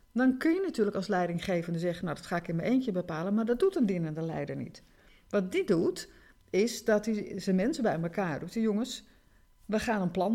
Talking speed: 220 wpm